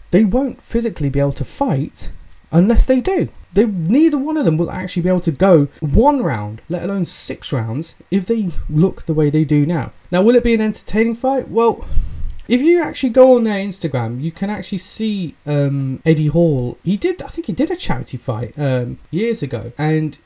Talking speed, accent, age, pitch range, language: 205 wpm, British, 20-39, 135-210 Hz, English